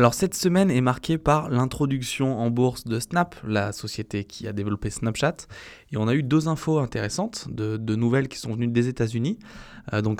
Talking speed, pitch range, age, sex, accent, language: 200 wpm, 105-130 Hz, 20-39, male, French, French